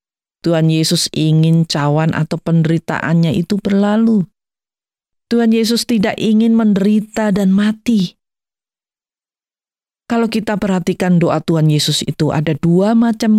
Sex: female